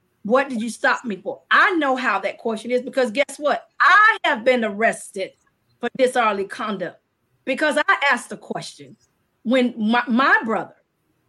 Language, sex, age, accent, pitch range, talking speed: English, female, 30-49, American, 230-300 Hz, 165 wpm